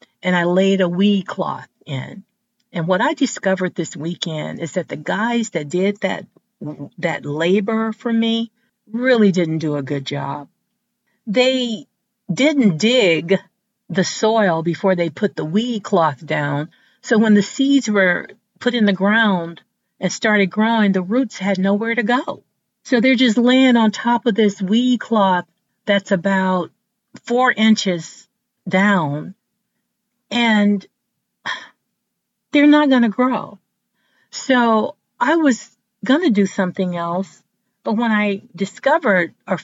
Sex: female